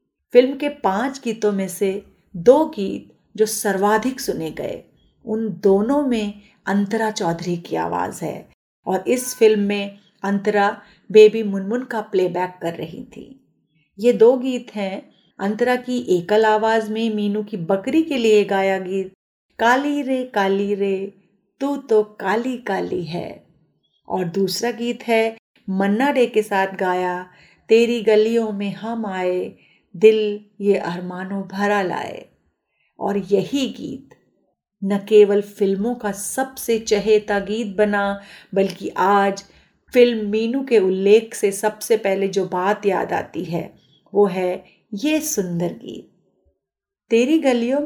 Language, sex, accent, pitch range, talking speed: Hindi, female, native, 195-230 Hz, 135 wpm